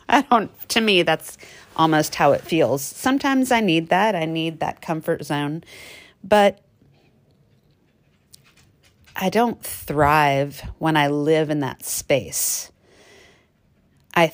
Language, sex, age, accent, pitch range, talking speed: English, female, 30-49, American, 145-185 Hz, 120 wpm